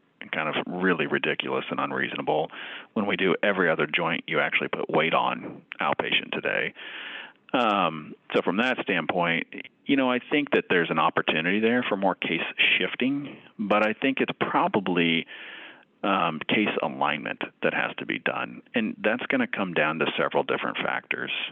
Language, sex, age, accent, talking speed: English, male, 40-59, American, 170 wpm